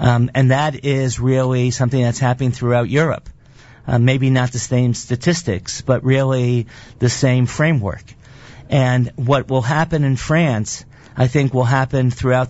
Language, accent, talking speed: English, American, 155 wpm